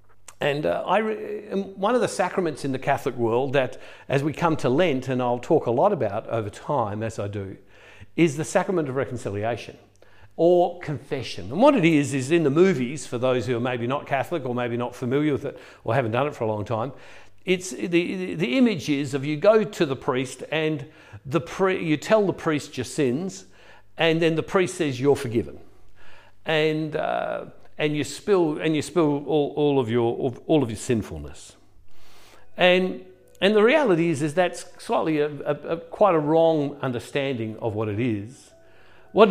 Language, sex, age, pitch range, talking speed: English, male, 50-69, 120-170 Hz, 195 wpm